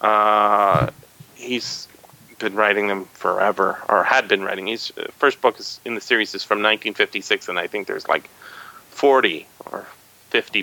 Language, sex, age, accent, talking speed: English, male, 30-49, American, 165 wpm